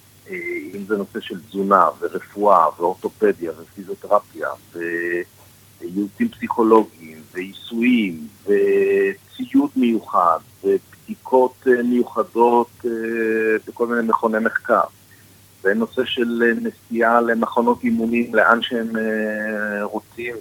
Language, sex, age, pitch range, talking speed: Hebrew, male, 50-69, 105-150 Hz, 80 wpm